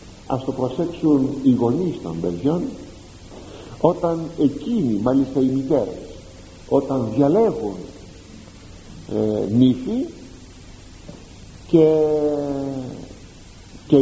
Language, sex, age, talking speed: Greek, male, 50-69, 75 wpm